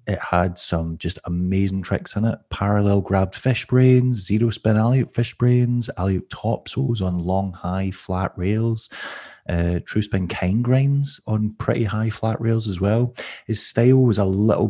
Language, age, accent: English, 30-49, British